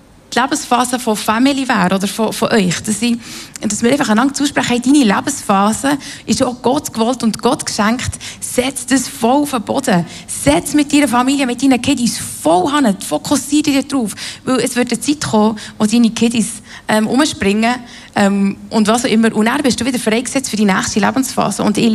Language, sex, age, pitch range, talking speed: German, female, 20-39, 215-265 Hz, 185 wpm